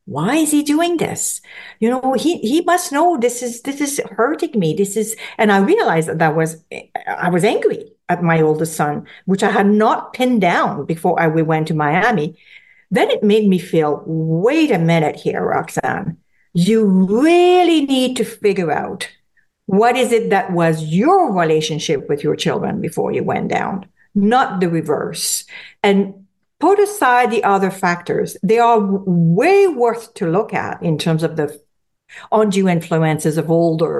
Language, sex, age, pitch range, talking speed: English, female, 50-69, 165-245 Hz, 170 wpm